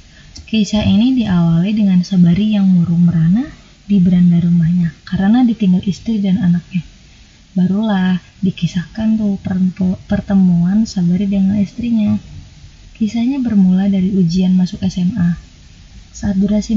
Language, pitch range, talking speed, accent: Indonesian, 180-220 Hz, 110 wpm, native